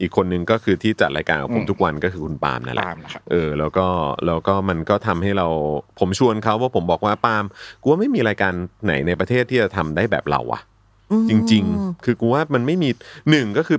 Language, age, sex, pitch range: Thai, 30-49, male, 90-120 Hz